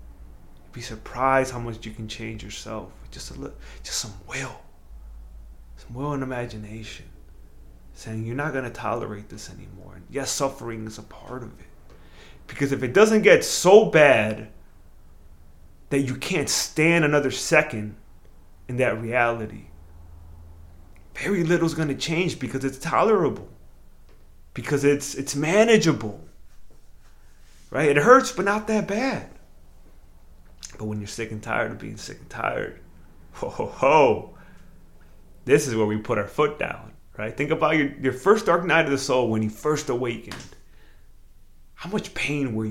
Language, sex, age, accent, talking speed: English, male, 30-49, American, 155 wpm